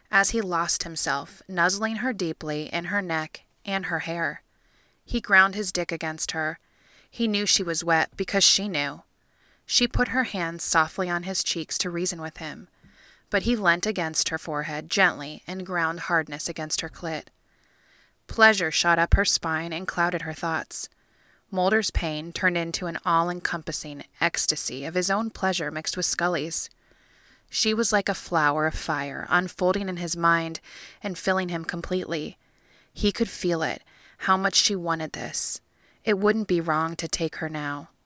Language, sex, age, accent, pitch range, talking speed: English, female, 20-39, American, 160-195 Hz, 170 wpm